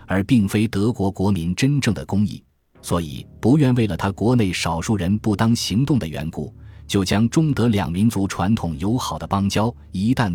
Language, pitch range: Chinese, 85-110 Hz